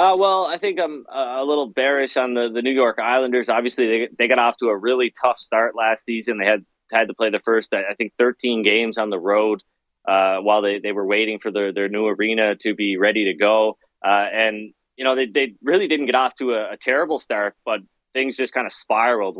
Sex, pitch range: male, 105-120 Hz